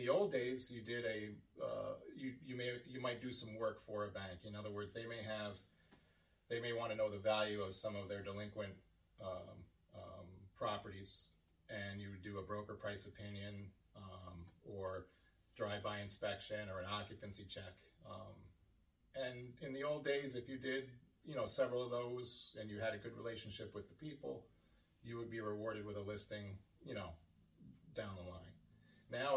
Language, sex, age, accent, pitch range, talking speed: English, male, 30-49, American, 90-110 Hz, 185 wpm